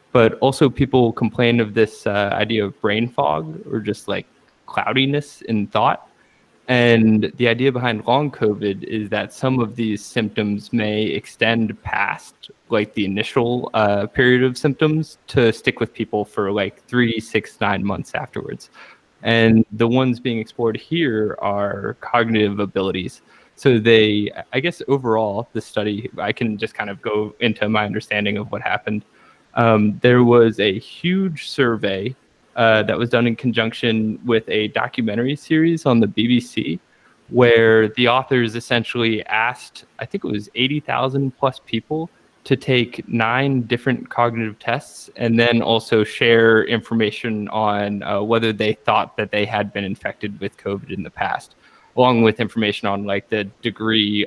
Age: 20-39